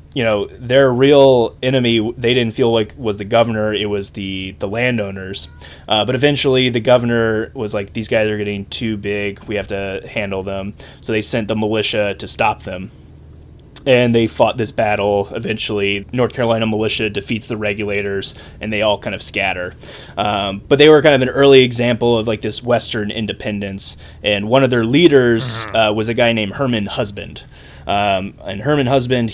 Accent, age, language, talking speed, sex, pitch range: American, 20-39, English, 185 wpm, male, 100-120 Hz